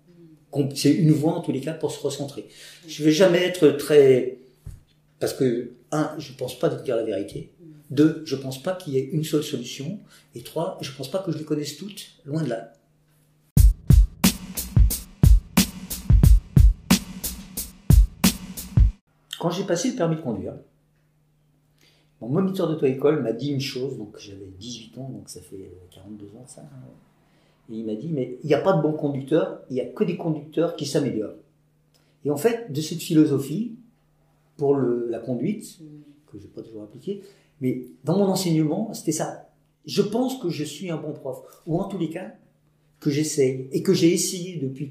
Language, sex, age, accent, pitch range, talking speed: French, male, 50-69, French, 140-165 Hz, 185 wpm